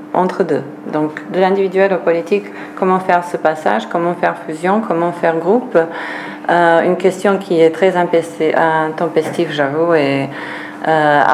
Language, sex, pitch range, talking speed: French, female, 155-175 Hz, 150 wpm